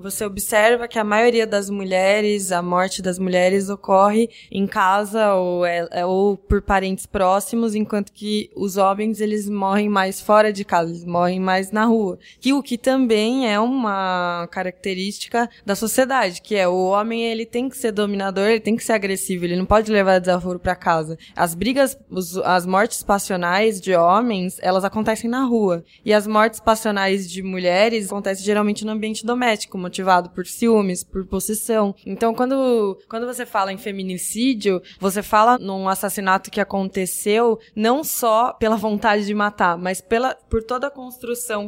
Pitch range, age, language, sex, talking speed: 190-225 Hz, 20-39, Portuguese, female, 165 wpm